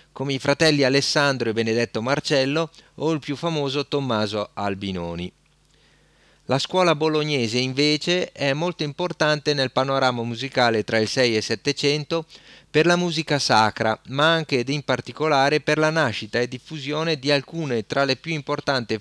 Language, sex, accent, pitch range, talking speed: Italian, male, native, 115-155 Hz, 155 wpm